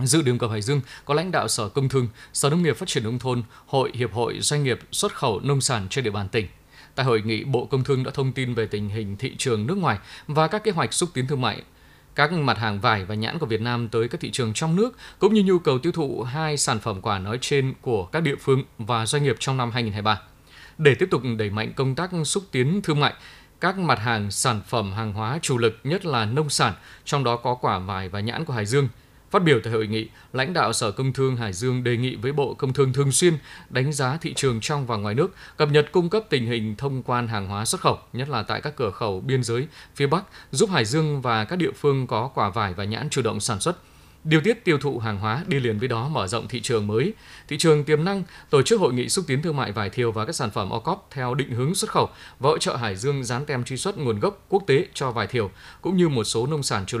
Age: 20-39